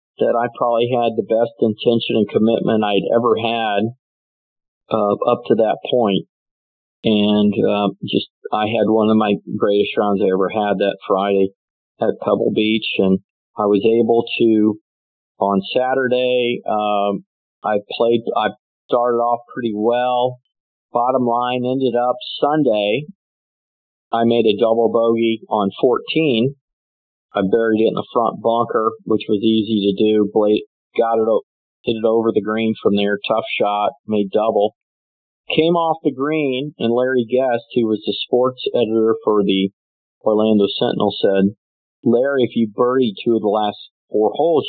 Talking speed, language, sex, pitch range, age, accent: 155 wpm, English, male, 100-120 Hz, 50-69, American